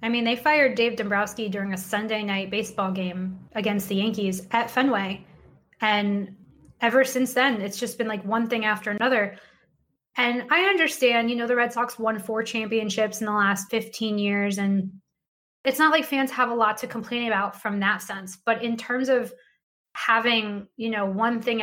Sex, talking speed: female, 190 wpm